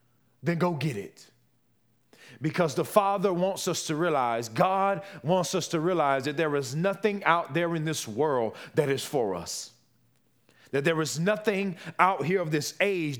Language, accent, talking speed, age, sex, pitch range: English, American, 175 wpm, 30-49, male, 140-190 Hz